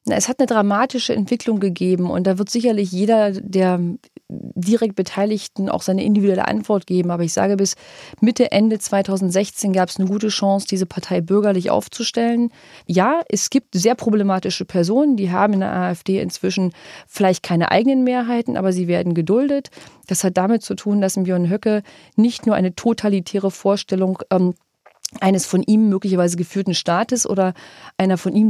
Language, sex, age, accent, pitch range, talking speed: German, female, 30-49, German, 185-215 Hz, 165 wpm